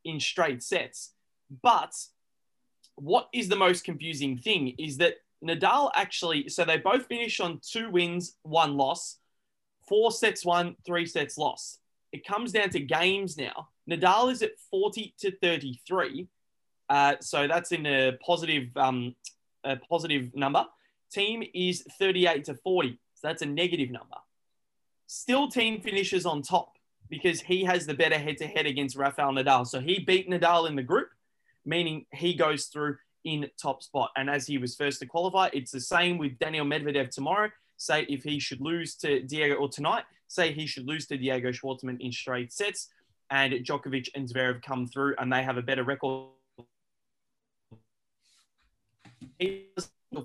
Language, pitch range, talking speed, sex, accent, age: English, 130-180 Hz, 160 wpm, male, Australian, 20-39